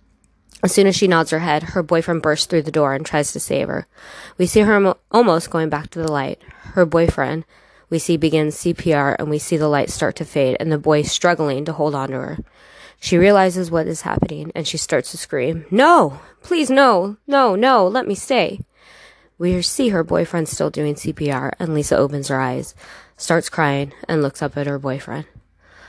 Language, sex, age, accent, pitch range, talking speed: English, female, 20-39, American, 150-185 Hz, 205 wpm